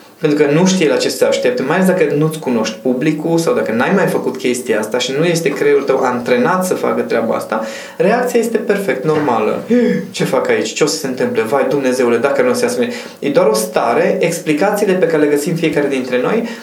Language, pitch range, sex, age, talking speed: Romanian, 145-225 Hz, male, 20-39, 225 wpm